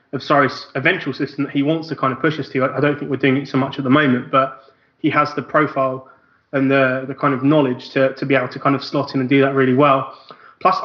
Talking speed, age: 270 wpm, 20-39